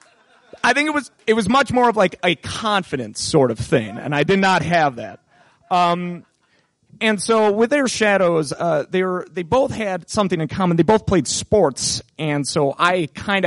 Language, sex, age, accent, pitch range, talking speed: English, male, 30-49, American, 145-205 Hz, 195 wpm